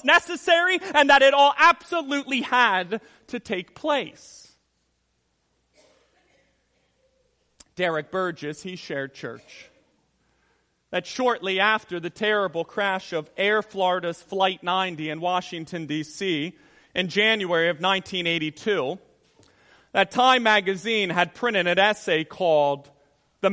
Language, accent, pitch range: English, American, 165-215 Hz